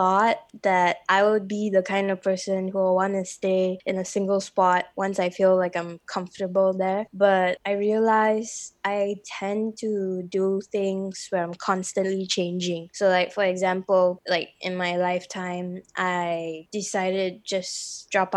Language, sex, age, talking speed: English, female, 20-39, 155 wpm